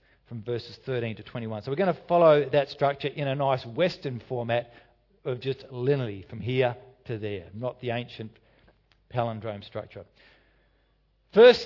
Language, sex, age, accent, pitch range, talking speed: English, male, 50-69, Australian, 130-195 Hz, 155 wpm